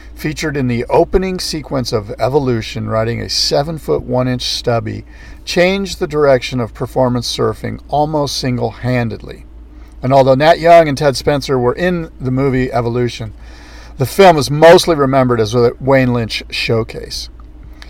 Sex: male